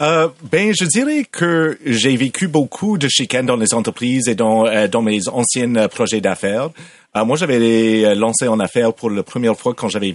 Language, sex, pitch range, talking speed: French, male, 105-140 Hz, 190 wpm